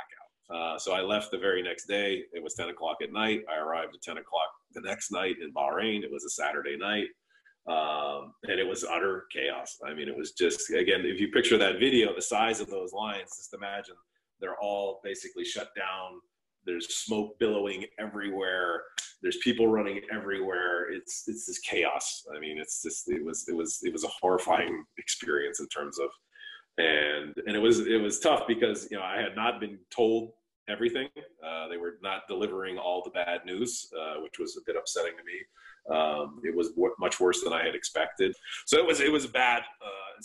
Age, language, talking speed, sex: 30-49, English, 200 wpm, male